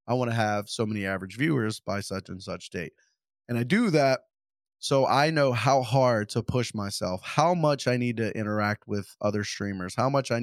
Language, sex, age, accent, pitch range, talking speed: English, male, 20-39, American, 105-130 Hz, 215 wpm